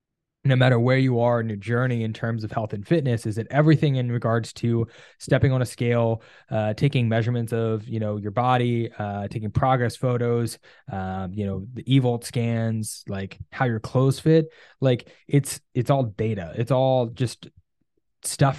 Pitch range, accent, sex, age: 110-130 Hz, American, male, 10-29